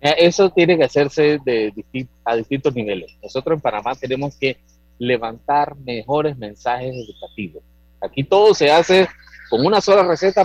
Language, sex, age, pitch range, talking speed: Spanish, male, 30-49, 105-155 Hz, 145 wpm